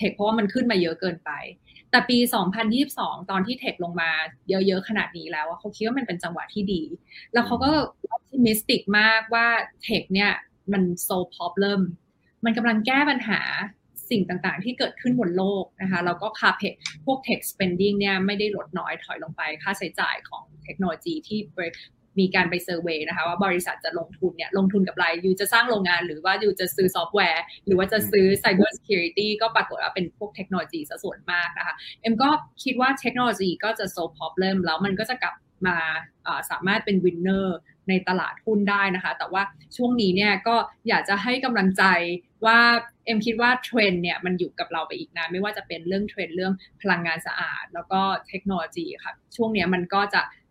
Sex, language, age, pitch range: female, English, 20-39, 180-225 Hz